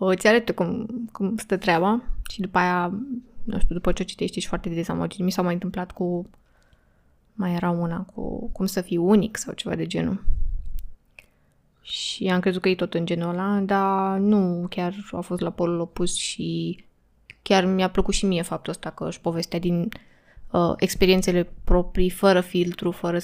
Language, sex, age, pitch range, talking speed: Romanian, female, 20-39, 175-195 Hz, 185 wpm